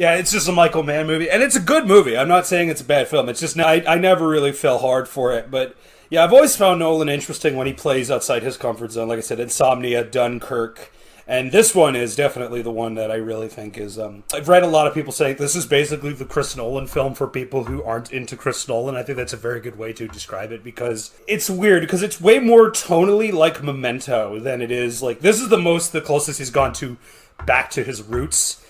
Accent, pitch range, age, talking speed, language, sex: American, 125-160 Hz, 30-49, 250 wpm, English, male